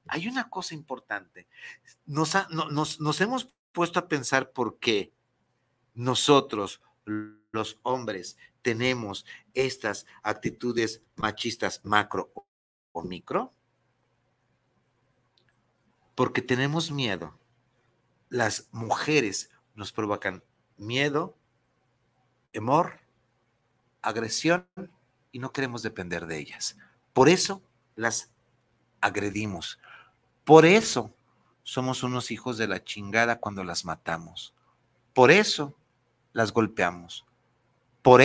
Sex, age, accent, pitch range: male, 50-69, Mexican, 115-145 Hz